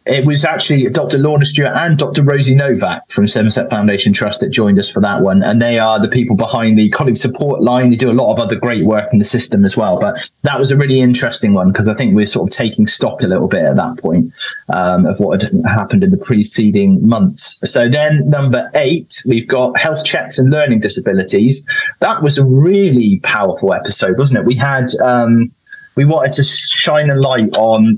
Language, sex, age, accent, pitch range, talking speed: English, male, 20-39, British, 115-155 Hz, 220 wpm